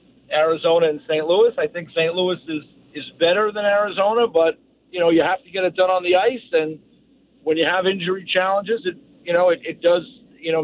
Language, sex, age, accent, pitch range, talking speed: English, male, 50-69, American, 170-225 Hz, 220 wpm